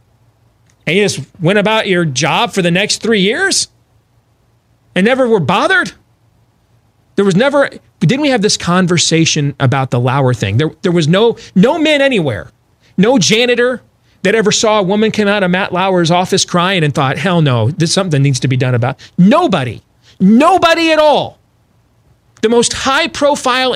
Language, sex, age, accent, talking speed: English, male, 40-59, American, 170 wpm